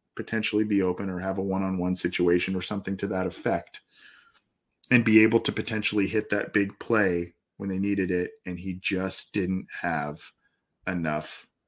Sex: male